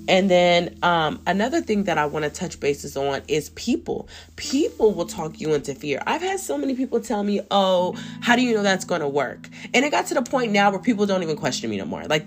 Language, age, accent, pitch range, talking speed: English, 20-39, American, 155-205 Hz, 255 wpm